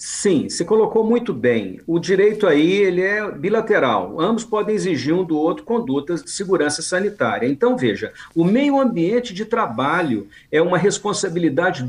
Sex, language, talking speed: male, Portuguese, 155 wpm